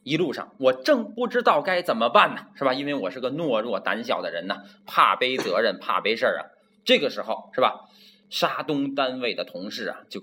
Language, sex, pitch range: Chinese, male, 175-245 Hz